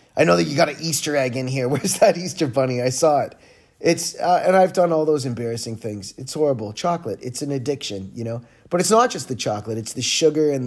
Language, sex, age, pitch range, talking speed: English, male, 30-49, 110-150 Hz, 245 wpm